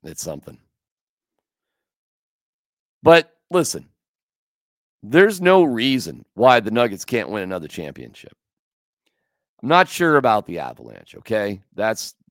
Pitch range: 105-150 Hz